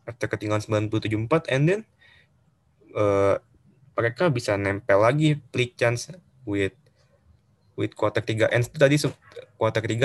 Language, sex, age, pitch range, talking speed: Indonesian, male, 20-39, 110-135 Hz, 115 wpm